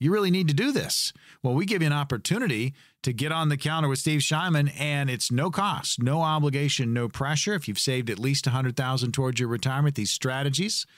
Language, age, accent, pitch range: English, 40-59, American, 125-155 Hz